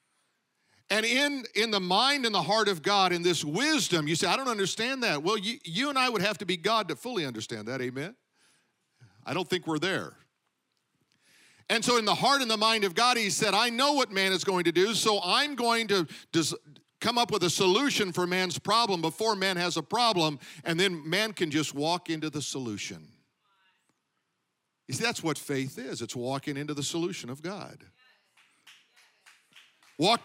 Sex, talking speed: male, 195 wpm